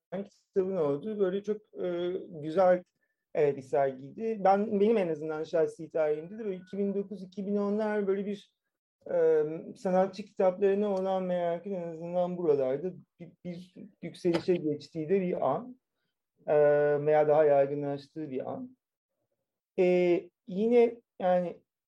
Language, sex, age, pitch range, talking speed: Turkish, male, 40-59, 175-225 Hz, 120 wpm